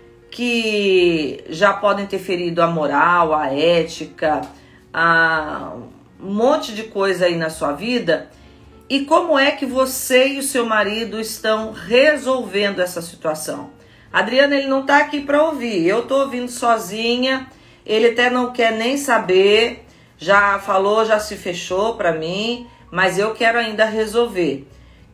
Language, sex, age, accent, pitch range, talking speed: Portuguese, female, 40-59, Brazilian, 185-240 Hz, 145 wpm